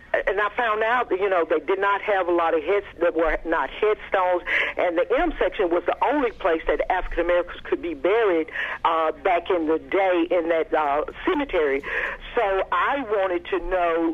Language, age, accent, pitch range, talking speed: English, 50-69, American, 165-215 Hz, 195 wpm